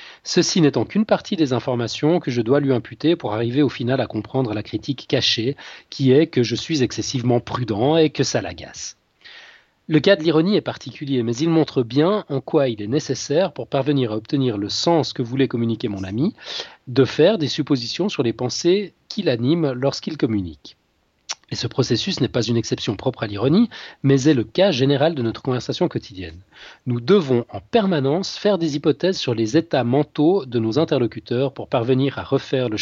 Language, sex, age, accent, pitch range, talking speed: French, male, 40-59, French, 120-155 Hz, 195 wpm